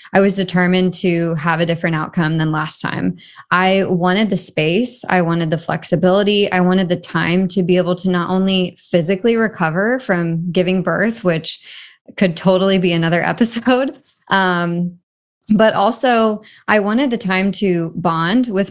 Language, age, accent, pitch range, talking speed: English, 20-39, American, 170-195 Hz, 155 wpm